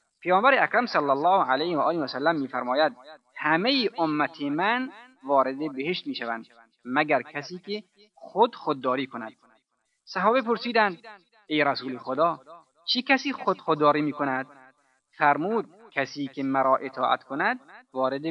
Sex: male